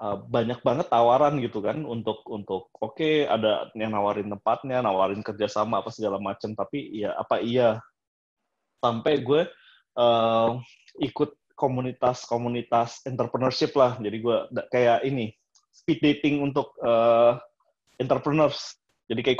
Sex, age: male, 20-39